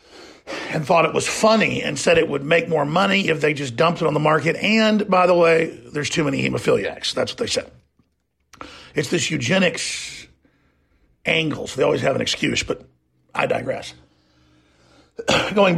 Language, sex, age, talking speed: English, male, 50-69, 175 wpm